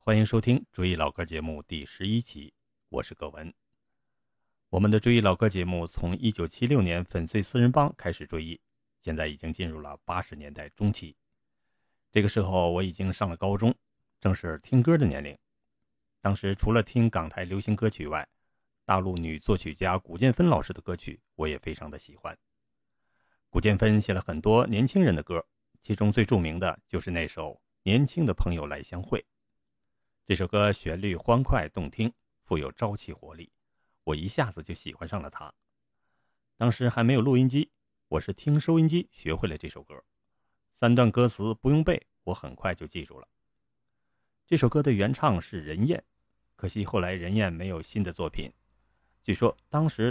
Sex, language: male, Chinese